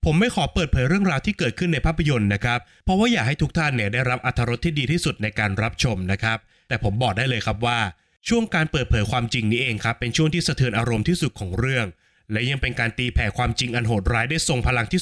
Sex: male